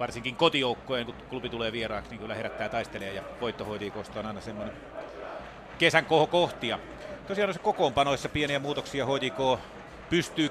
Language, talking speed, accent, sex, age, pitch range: Finnish, 145 wpm, native, male, 30-49, 110-140 Hz